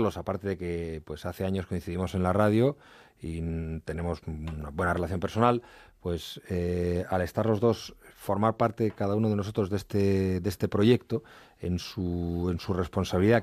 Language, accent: Spanish, Spanish